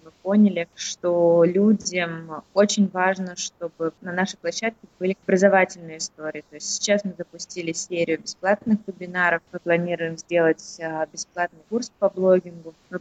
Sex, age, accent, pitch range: female, 20-39, native, 165-195 Hz